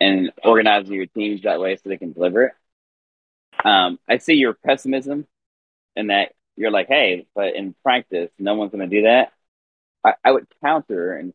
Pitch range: 80-105 Hz